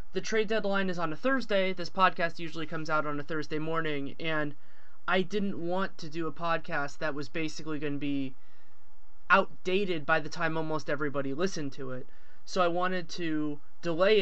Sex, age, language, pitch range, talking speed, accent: male, 20-39, English, 145-170 Hz, 185 wpm, American